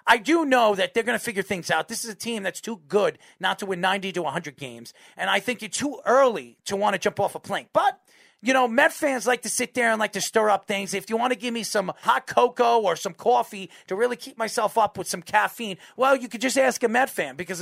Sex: male